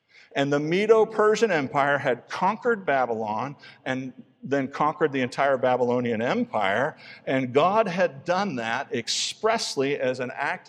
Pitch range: 120-165 Hz